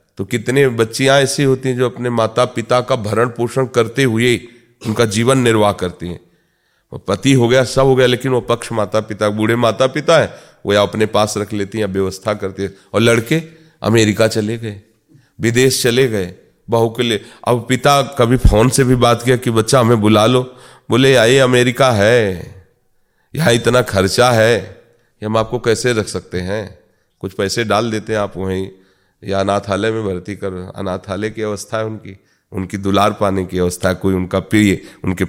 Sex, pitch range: male, 95-125 Hz